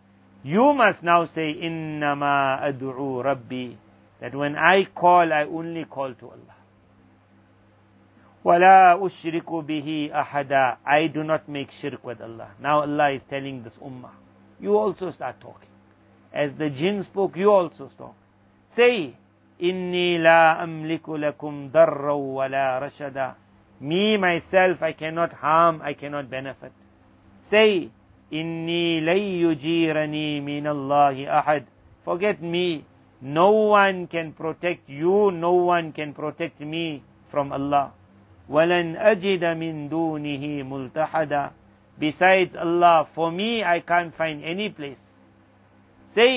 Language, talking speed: English, 115 wpm